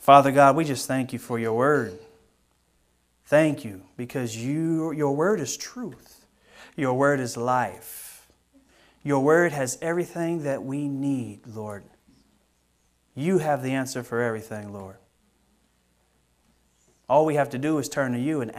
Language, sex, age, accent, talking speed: English, male, 30-49, American, 145 wpm